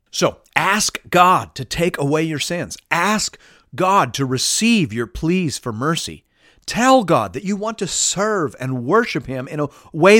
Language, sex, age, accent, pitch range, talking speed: English, male, 40-59, American, 115-180 Hz, 170 wpm